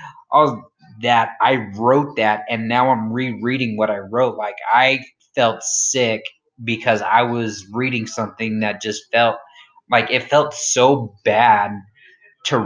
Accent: American